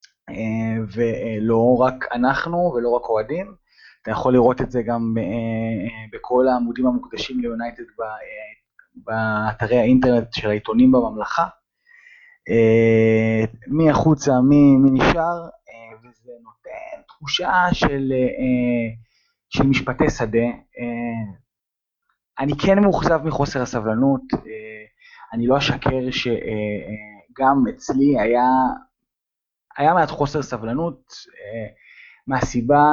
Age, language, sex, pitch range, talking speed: 20-39, Hebrew, male, 115-145 Hz, 85 wpm